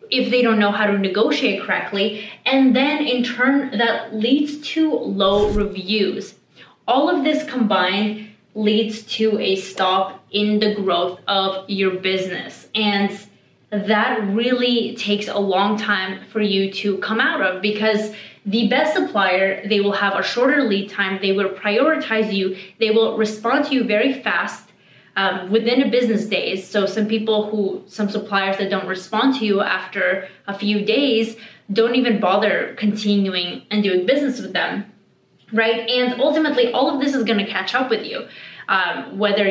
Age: 20-39